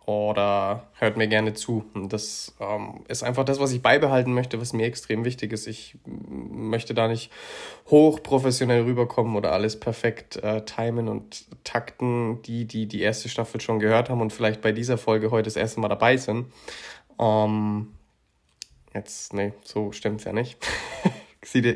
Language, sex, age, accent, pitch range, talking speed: German, male, 20-39, German, 105-115 Hz, 160 wpm